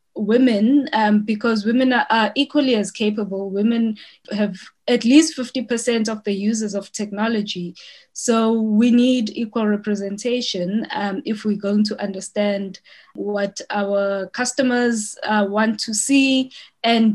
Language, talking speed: English, 135 wpm